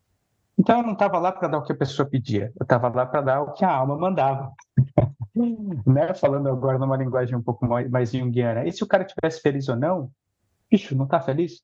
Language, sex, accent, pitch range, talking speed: Portuguese, male, Brazilian, 130-190 Hz, 220 wpm